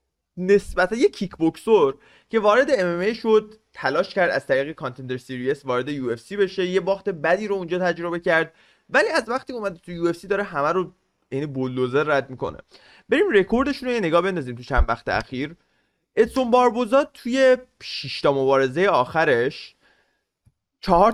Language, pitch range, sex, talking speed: Persian, 130-200 Hz, male, 150 wpm